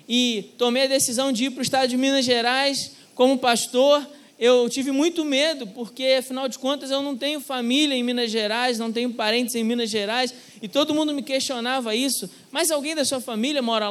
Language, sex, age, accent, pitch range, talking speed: Portuguese, male, 20-39, Brazilian, 245-300 Hz, 205 wpm